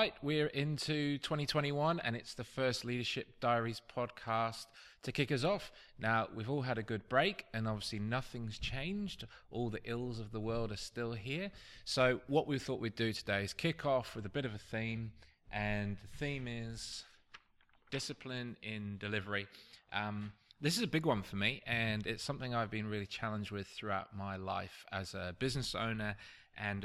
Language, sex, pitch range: English, male, 100-125 Hz